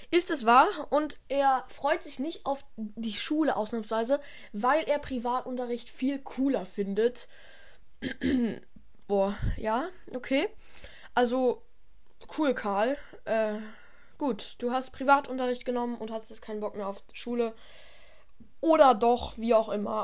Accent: German